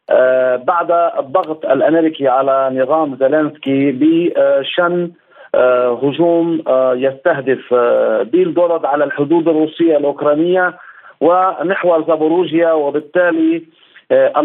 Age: 50-69